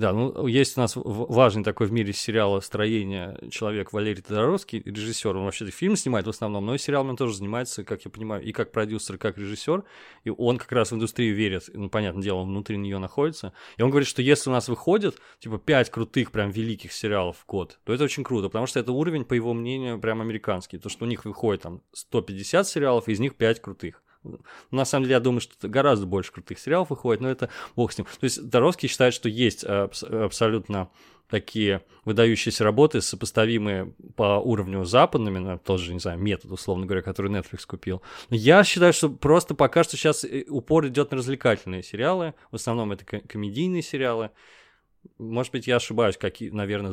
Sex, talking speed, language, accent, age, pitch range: male, 195 wpm, Russian, native, 20-39, 100-130 Hz